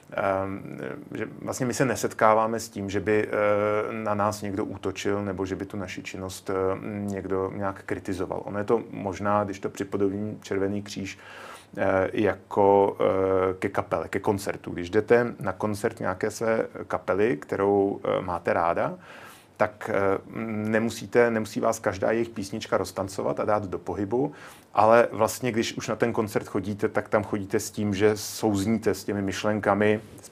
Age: 30-49